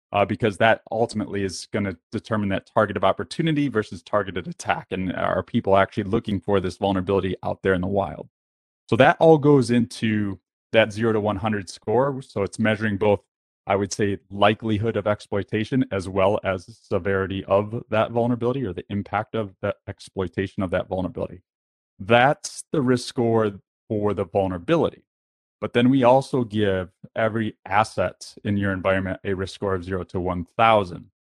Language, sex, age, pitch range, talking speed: English, male, 30-49, 95-110 Hz, 170 wpm